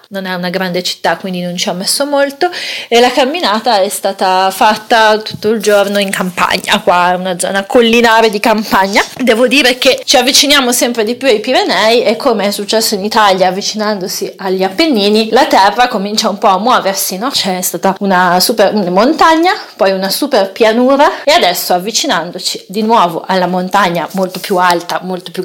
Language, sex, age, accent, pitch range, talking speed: Italian, female, 30-49, native, 185-230 Hz, 180 wpm